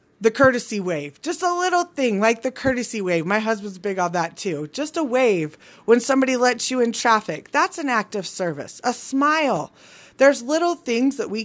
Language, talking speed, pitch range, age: English, 200 wpm, 185-240 Hz, 20-39